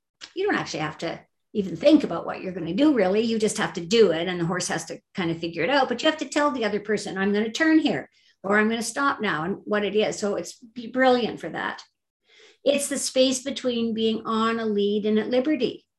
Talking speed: 260 wpm